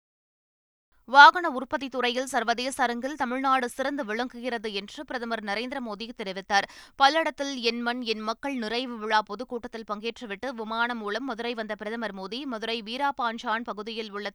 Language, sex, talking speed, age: Tamil, female, 130 wpm, 20-39